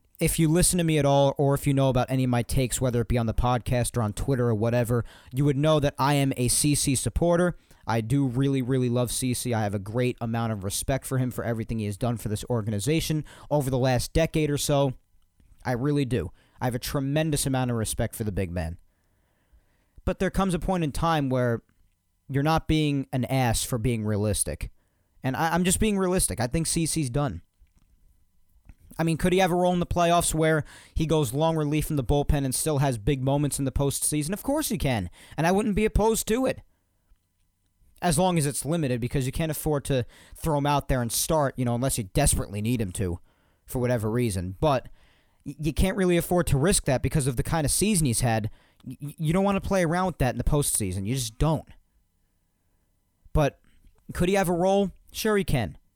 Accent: American